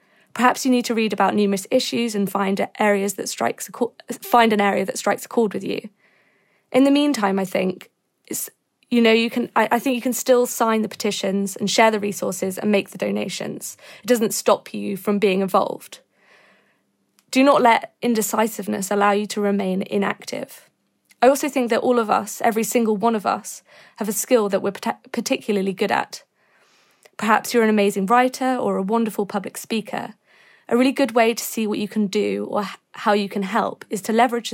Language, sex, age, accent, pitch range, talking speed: English, female, 20-39, British, 200-235 Hz, 200 wpm